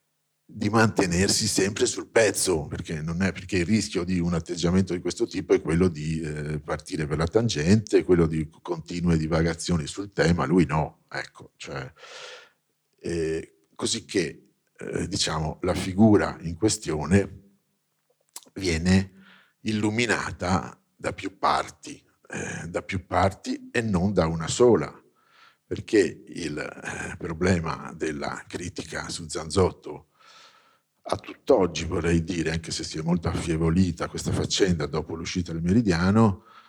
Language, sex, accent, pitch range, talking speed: Italian, male, native, 80-100 Hz, 130 wpm